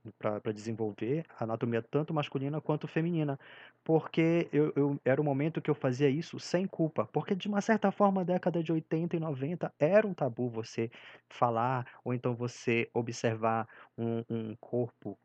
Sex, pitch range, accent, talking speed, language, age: male, 115-140 Hz, Brazilian, 170 wpm, Portuguese, 20-39